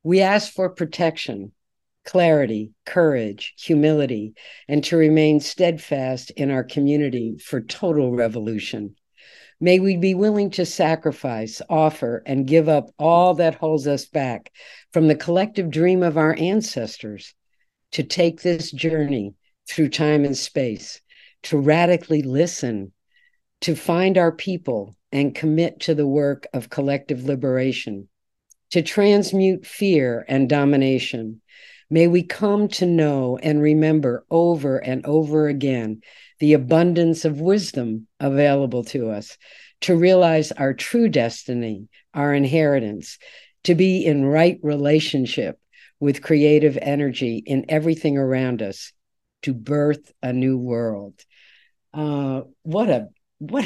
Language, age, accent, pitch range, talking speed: English, 50-69, American, 130-165 Hz, 125 wpm